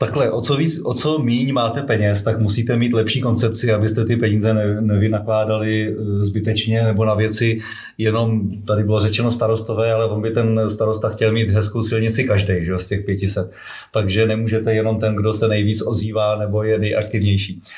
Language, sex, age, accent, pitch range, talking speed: Czech, male, 30-49, native, 105-115 Hz, 170 wpm